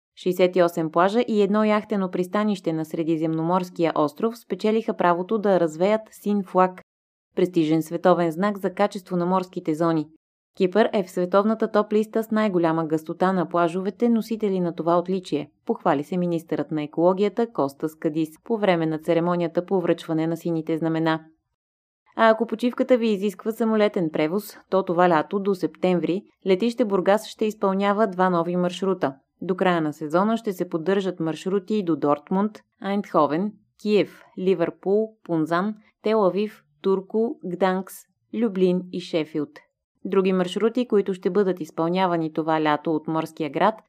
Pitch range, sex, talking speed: 165-210 Hz, female, 140 wpm